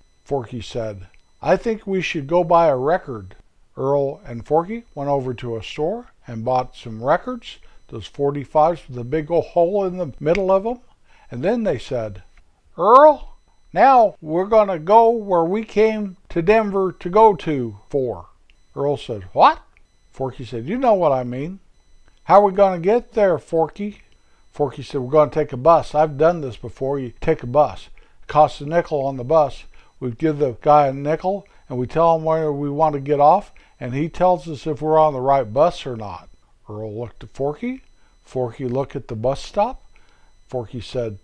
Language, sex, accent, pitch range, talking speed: English, male, American, 125-180 Hz, 195 wpm